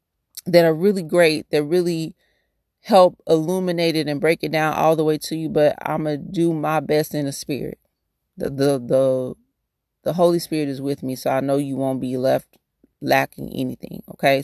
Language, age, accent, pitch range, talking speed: English, 30-49, American, 140-170 Hz, 190 wpm